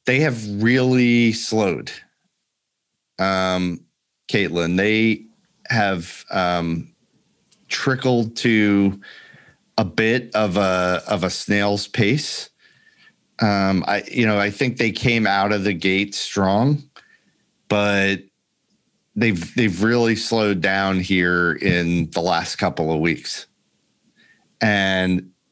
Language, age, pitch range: English, 40-59, 95-120 Hz